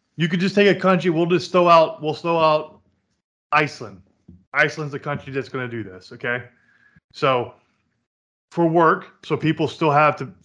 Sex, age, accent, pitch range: male, 20-39, American, 135-160 Hz